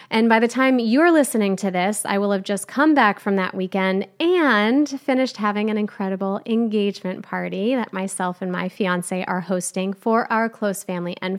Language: English